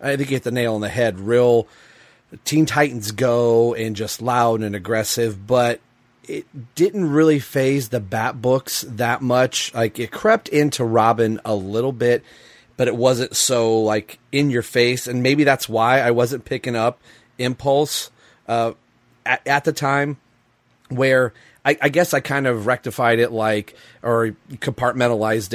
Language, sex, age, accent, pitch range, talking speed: English, male, 30-49, American, 105-125 Hz, 160 wpm